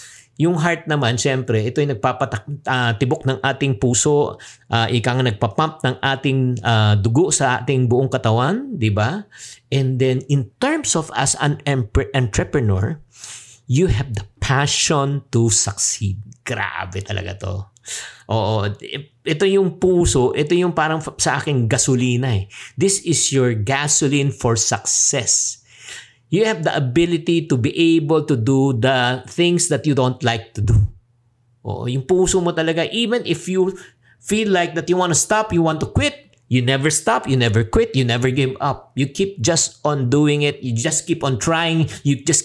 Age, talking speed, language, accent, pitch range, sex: 50-69, 160 wpm, English, Filipino, 120-165 Hz, male